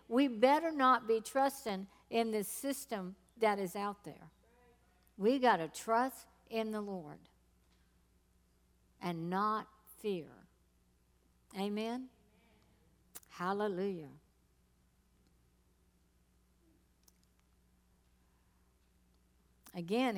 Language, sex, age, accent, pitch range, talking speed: English, female, 60-79, American, 175-230 Hz, 75 wpm